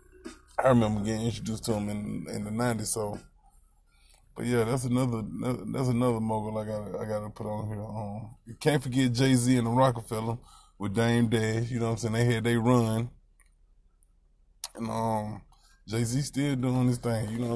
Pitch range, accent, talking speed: 110-125 Hz, American, 195 wpm